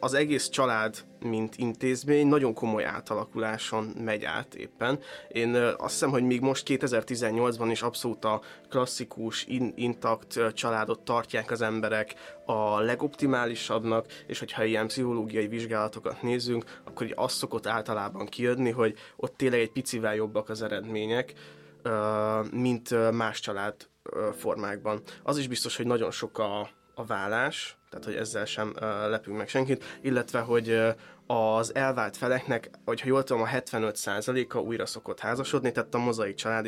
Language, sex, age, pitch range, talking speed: Hungarian, male, 20-39, 110-125 Hz, 140 wpm